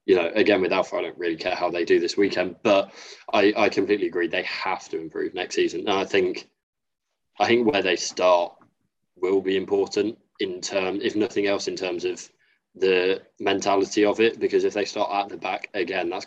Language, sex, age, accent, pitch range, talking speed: English, male, 20-39, British, 360-390 Hz, 205 wpm